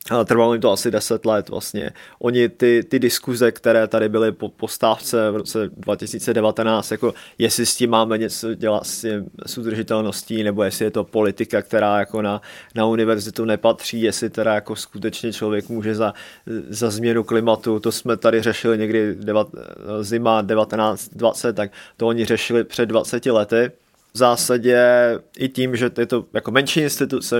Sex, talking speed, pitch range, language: male, 160 wpm, 110-120 Hz, Czech